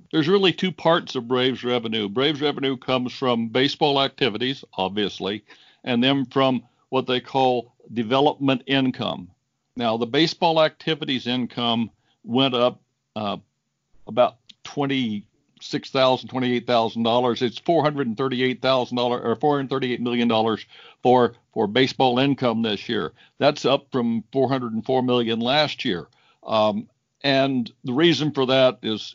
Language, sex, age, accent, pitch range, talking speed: English, male, 60-79, American, 120-135 Hz, 145 wpm